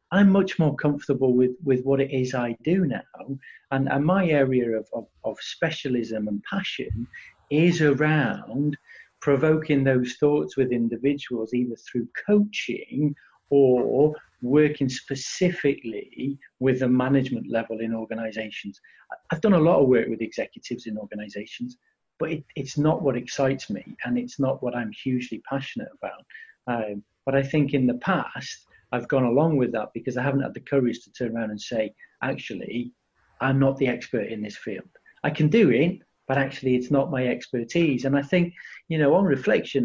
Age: 40-59